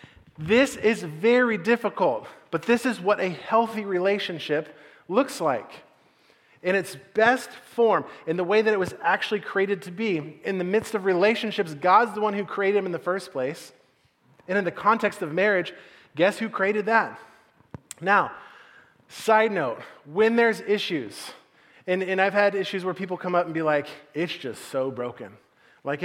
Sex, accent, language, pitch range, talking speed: male, American, English, 145-200 Hz, 175 wpm